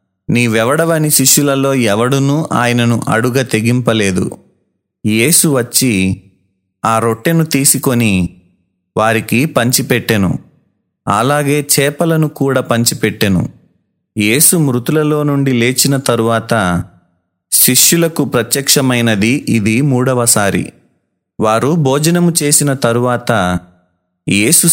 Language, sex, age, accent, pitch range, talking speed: Telugu, male, 30-49, native, 110-145 Hz, 80 wpm